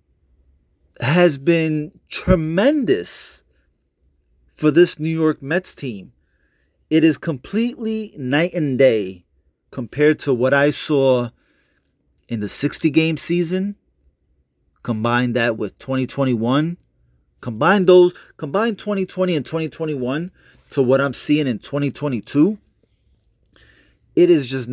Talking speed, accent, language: 105 wpm, American, English